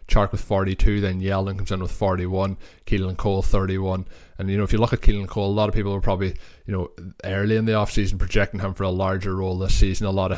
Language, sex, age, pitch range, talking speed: English, male, 20-39, 90-100 Hz, 260 wpm